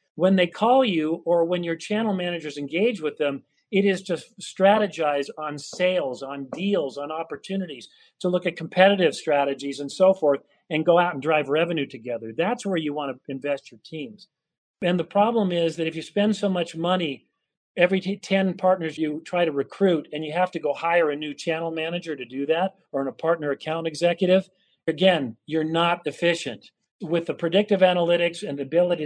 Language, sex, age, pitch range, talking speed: English, male, 40-59, 155-185 Hz, 190 wpm